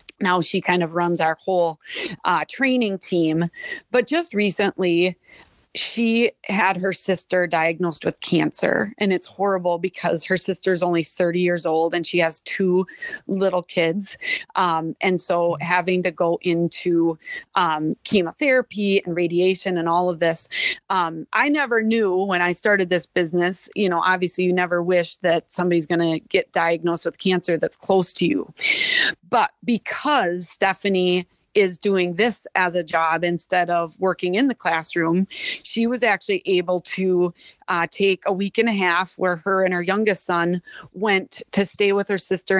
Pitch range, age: 175-205 Hz, 30-49